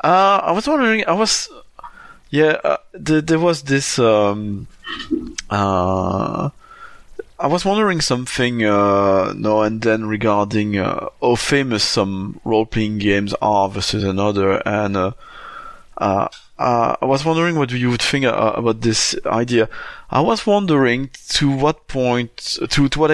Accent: French